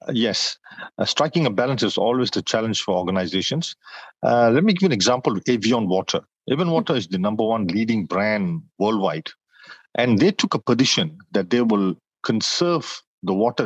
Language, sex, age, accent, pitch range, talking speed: English, male, 50-69, Indian, 110-150 Hz, 180 wpm